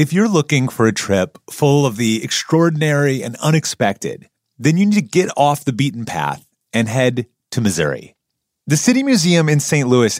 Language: English